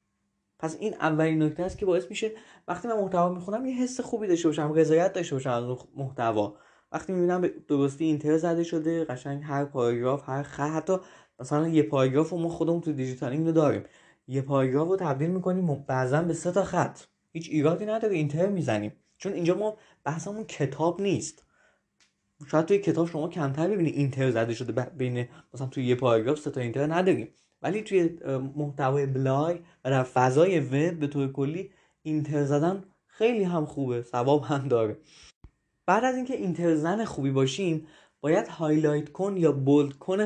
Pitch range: 140-180 Hz